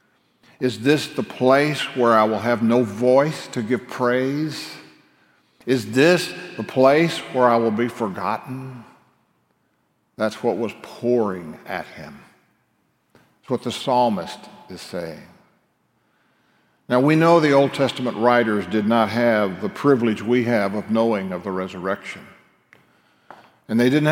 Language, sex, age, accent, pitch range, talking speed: English, male, 60-79, American, 105-130 Hz, 140 wpm